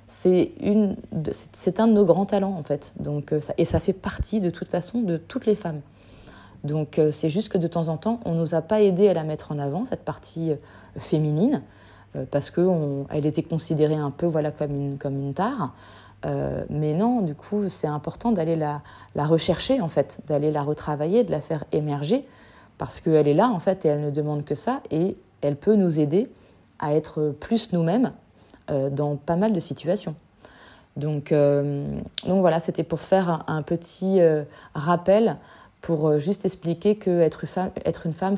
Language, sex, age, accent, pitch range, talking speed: French, female, 20-39, French, 150-185 Hz, 185 wpm